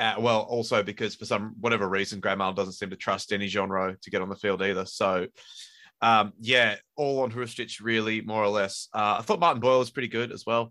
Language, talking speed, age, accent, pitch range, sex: English, 235 wpm, 20-39, Australian, 100-120 Hz, male